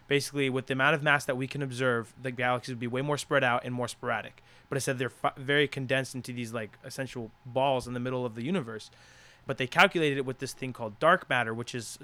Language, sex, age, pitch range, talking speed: English, male, 20-39, 125-145 Hz, 250 wpm